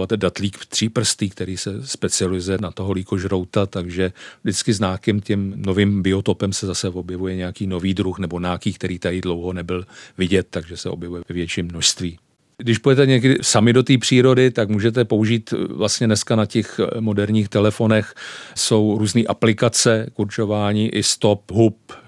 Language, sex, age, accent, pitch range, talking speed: Czech, male, 40-59, native, 95-110 Hz, 150 wpm